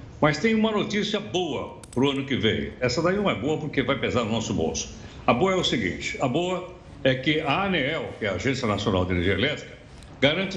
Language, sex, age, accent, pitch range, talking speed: Portuguese, male, 60-79, Brazilian, 120-170 Hz, 235 wpm